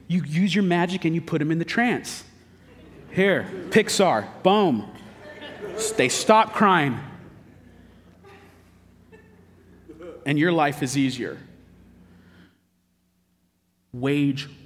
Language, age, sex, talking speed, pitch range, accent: English, 30-49, male, 95 wpm, 105-150 Hz, American